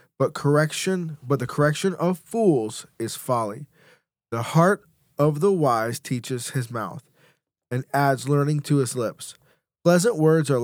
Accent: American